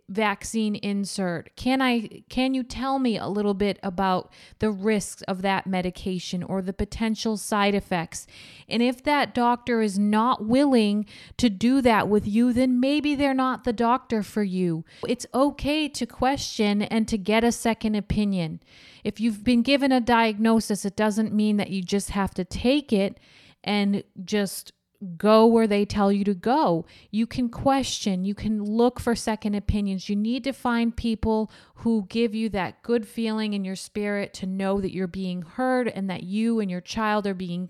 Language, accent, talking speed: English, American, 180 wpm